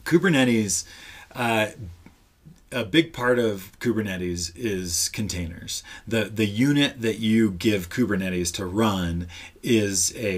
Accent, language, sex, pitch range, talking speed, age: American, English, male, 90-120 Hz, 115 wpm, 30-49